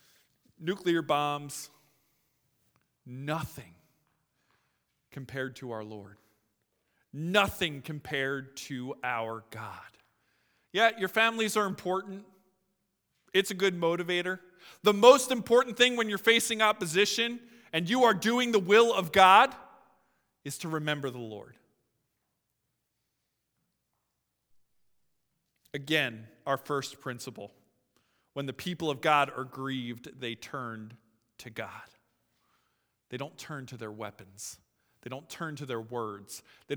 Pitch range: 125-175 Hz